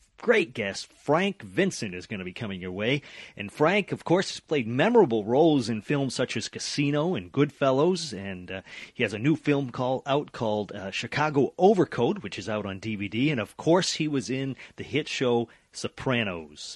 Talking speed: 195 wpm